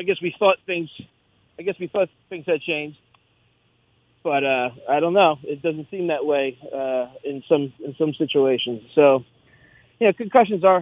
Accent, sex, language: American, male, English